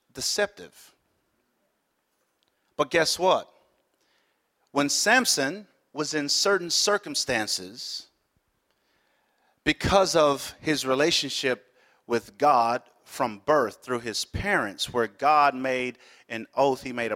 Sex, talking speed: male, 100 wpm